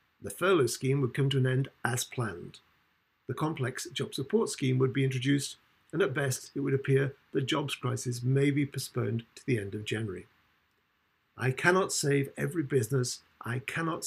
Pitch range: 115-140 Hz